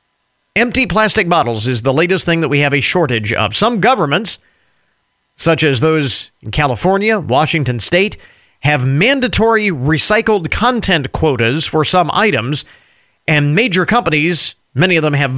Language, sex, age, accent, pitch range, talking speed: English, male, 40-59, American, 140-180 Hz, 145 wpm